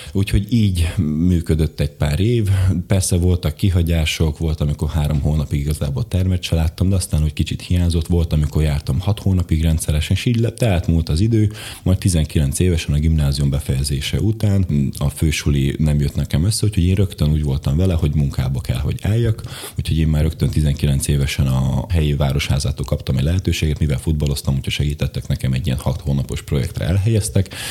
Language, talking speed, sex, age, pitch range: Hungarian, 175 wpm, male, 30-49, 75-95 Hz